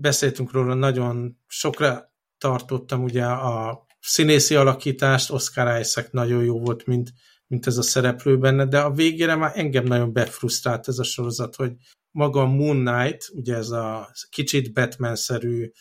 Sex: male